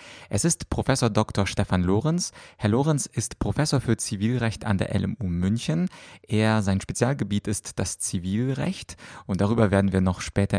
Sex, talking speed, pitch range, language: male, 155 wpm, 100-125 Hz, German